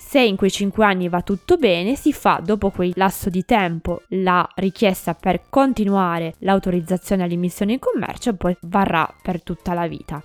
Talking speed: 175 wpm